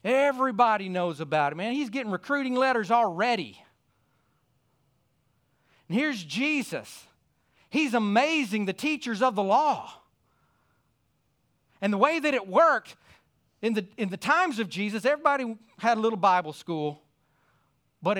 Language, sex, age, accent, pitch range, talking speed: English, male, 40-59, American, 135-220 Hz, 130 wpm